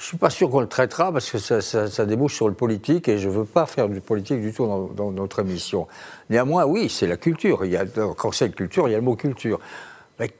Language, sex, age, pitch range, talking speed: French, male, 60-79, 105-150 Hz, 290 wpm